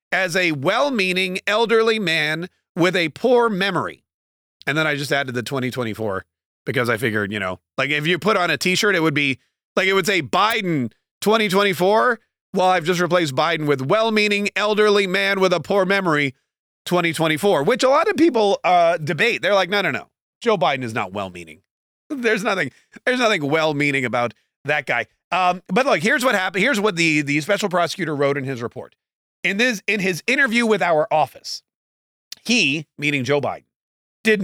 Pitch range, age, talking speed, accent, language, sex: 145-205 Hz, 30-49, 180 wpm, American, English, male